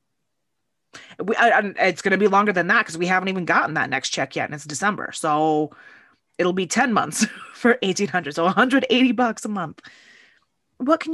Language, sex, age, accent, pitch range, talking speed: English, female, 20-39, American, 155-210 Hz, 195 wpm